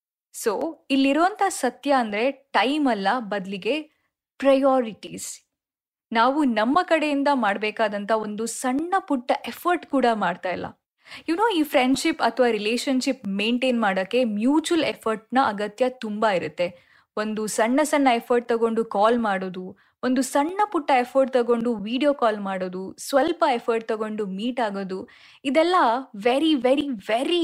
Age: 10-29